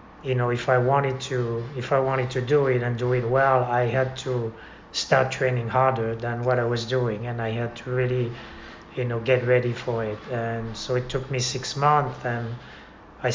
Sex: male